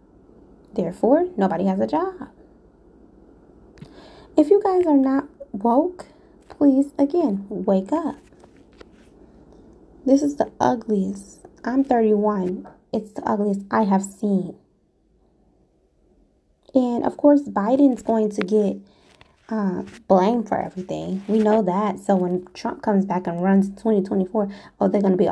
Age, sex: 20-39, female